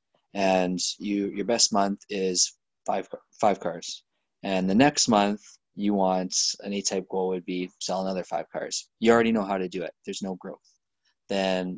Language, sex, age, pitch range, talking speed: English, male, 20-39, 95-115 Hz, 185 wpm